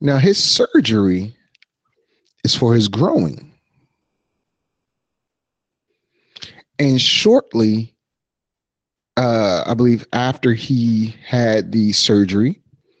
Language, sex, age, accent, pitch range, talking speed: English, male, 30-49, American, 95-120 Hz, 80 wpm